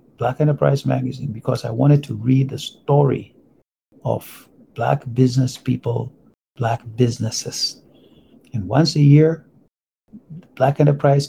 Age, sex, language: 60-79, male, English